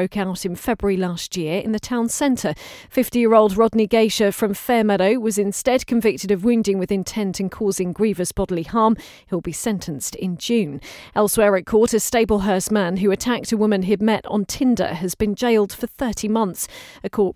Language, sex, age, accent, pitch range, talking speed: English, female, 40-59, British, 195-235 Hz, 195 wpm